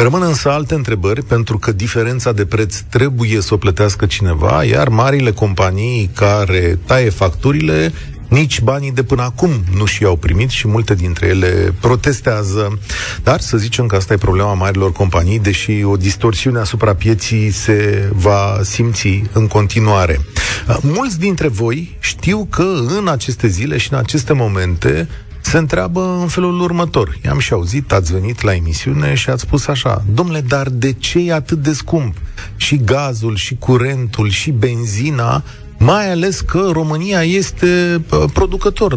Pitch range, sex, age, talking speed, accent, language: 100-140 Hz, male, 40-59, 155 wpm, native, Romanian